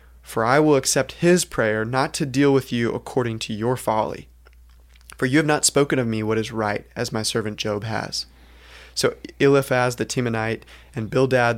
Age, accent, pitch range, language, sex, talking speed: 20-39, American, 110-130 Hz, English, male, 185 wpm